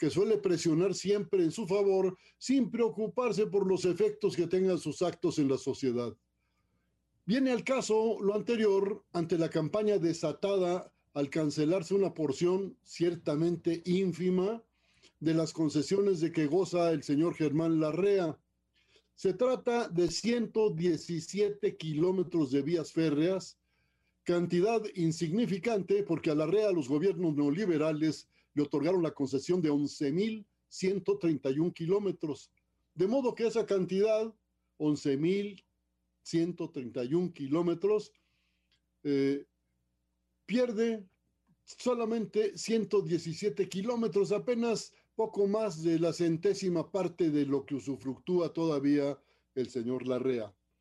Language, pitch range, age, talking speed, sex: Spanish, 150-205 Hz, 50-69, 110 wpm, male